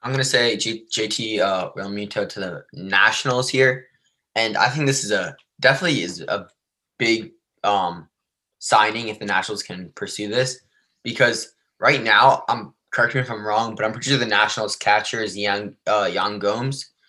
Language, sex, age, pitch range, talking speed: English, male, 10-29, 105-125 Hz, 170 wpm